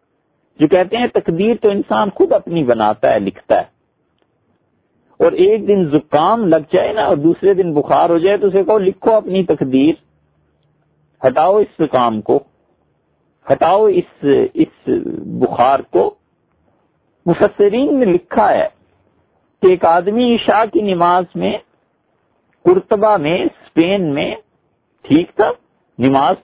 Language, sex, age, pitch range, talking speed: English, male, 50-69, 165-220 Hz, 120 wpm